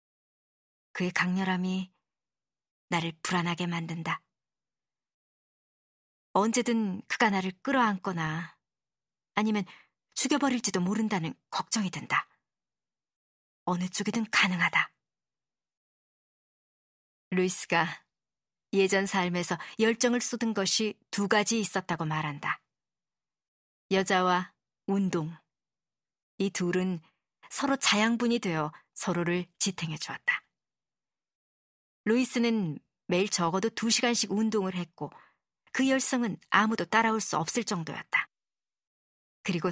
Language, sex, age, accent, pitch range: Korean, male, 40-59, native, 175-225 Hz